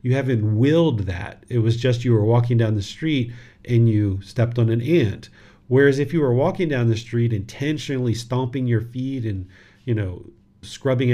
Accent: American